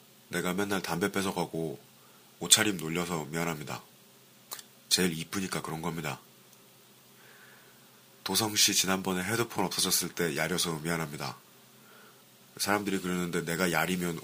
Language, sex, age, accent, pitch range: Korean, male, 30-49, native, 80-95 Hz